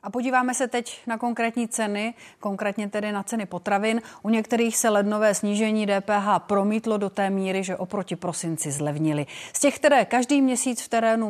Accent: native